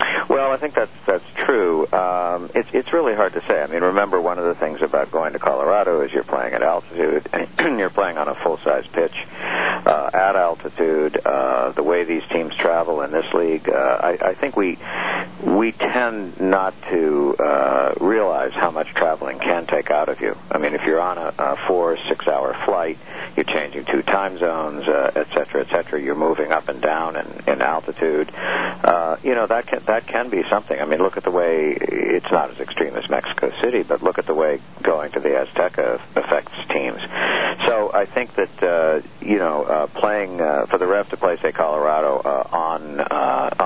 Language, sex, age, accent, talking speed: English, male, 60-79, American, 200 wpm